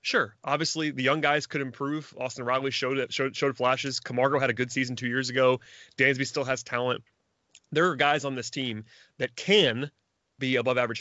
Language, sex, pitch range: English, male, 120-145 Hz